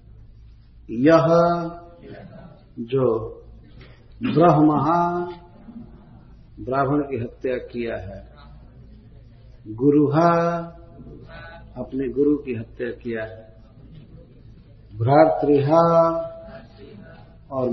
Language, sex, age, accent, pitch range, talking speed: Hindi, male, 50-69, native, 115-160 Hz, 60 wpm